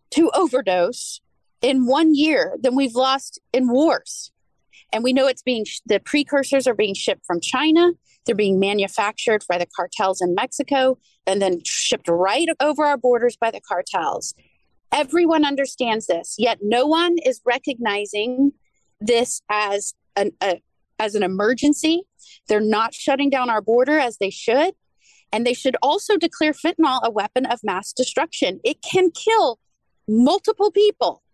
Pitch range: 215-300 Hz